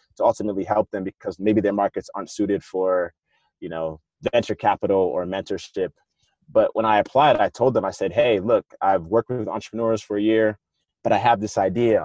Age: 20-39